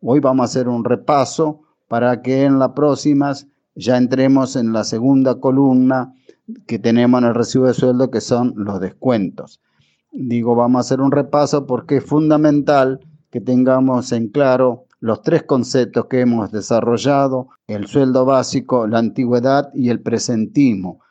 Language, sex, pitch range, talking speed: Spanish, male, 125-145 Hz, 155 wpm